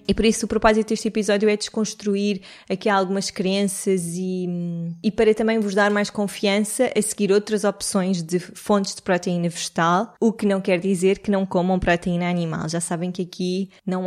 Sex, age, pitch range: female, 20-39, 180-200 Hz